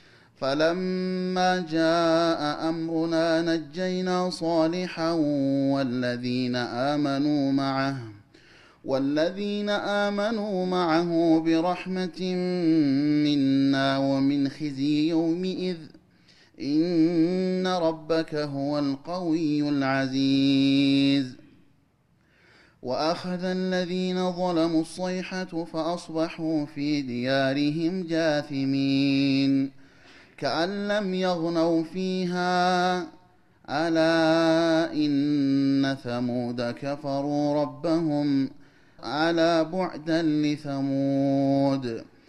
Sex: male